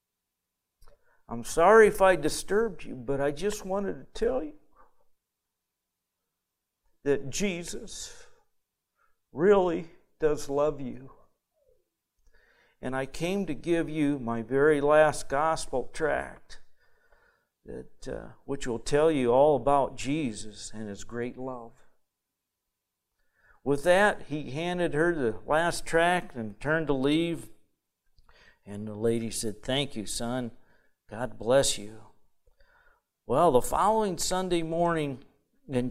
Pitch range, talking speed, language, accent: 125-180 Hz, 120 wpm, English, American